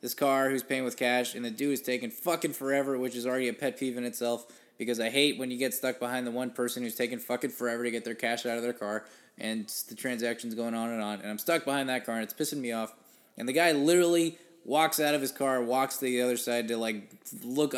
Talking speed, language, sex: 265 wpm, English, male